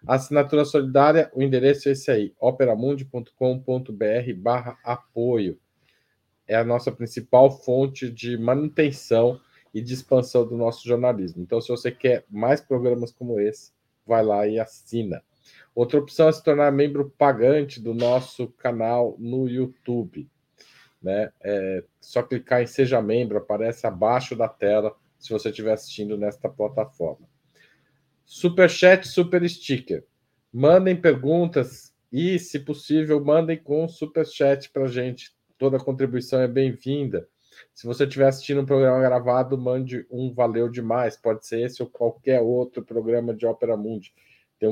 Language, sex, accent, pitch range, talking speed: Portuguese, male, Brazilian, 115-140 Hz, 140 wpm